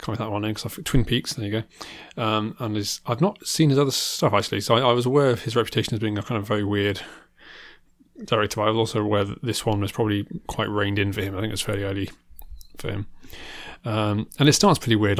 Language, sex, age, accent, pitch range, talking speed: English, male, 30-49, British, 105-125 Hz, 255 wpm